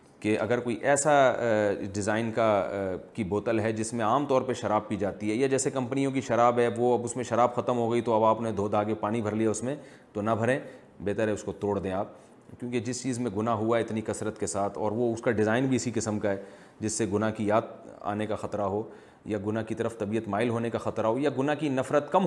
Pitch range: 110-135 Hz